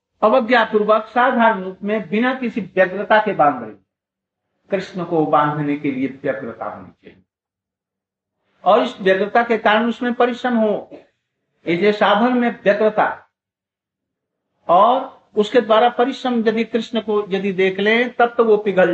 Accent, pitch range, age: native, 175-230 Hz, 60-79